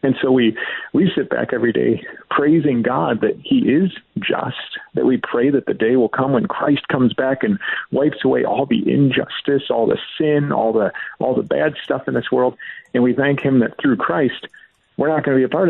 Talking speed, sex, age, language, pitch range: 220 wpm, male, 40-59, English, 110-135 Hz